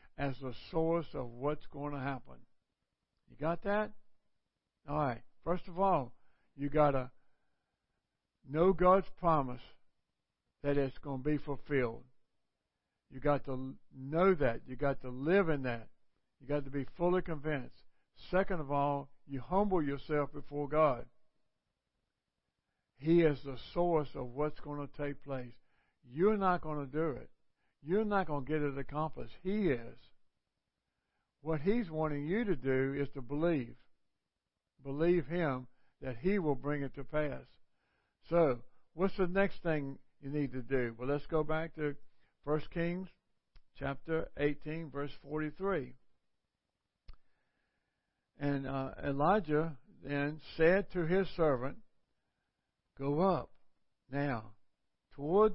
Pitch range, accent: 135-165 Hz, American